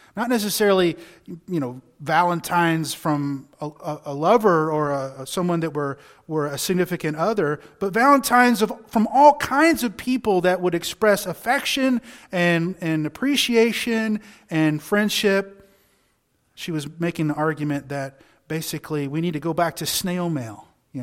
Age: 30-49